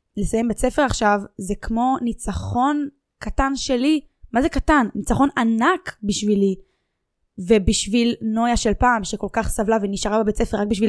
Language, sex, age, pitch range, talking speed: Hebrew, female, 10-29, 205-245 Hz, 150 wpm